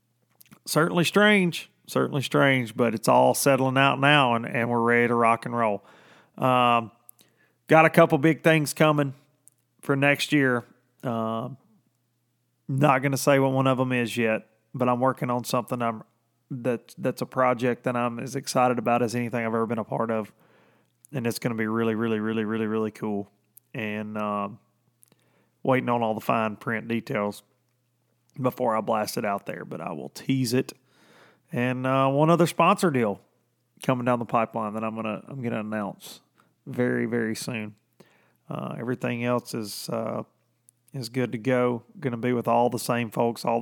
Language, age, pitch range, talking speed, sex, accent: English, 30-49, 115-135 Hz, 175 wpm, male, American